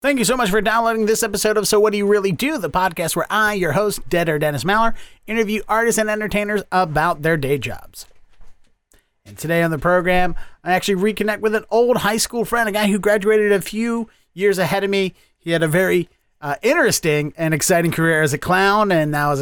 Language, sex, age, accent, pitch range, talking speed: English, male, 30-49, American, 145-205 Hz, 225 wpm